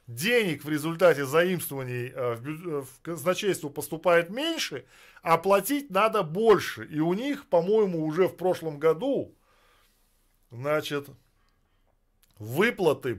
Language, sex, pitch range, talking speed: Russian, male, 145-200 Hz, 100 wpm